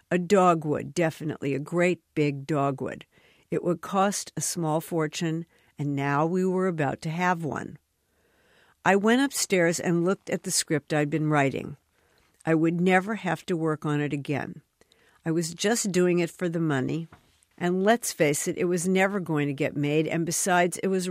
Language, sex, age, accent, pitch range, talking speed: English, female, 60-79, American, 150-185 Hz, 180 wpm